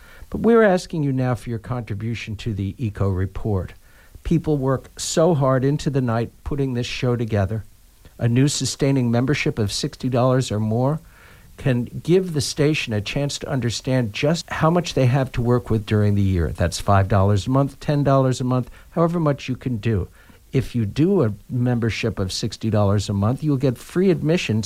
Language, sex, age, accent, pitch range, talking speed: English, male, 60-79, American, 105-145 Hz, 185 wpm